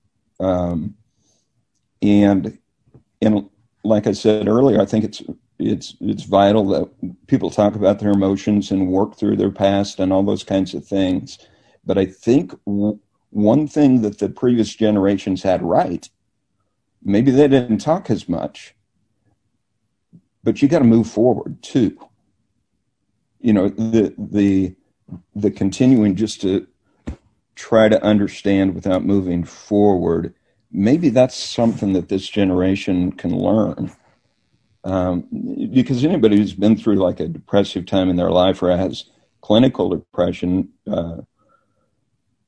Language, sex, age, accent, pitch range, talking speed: English, male, 50-69, American, 95-110 Hz, 135 wpm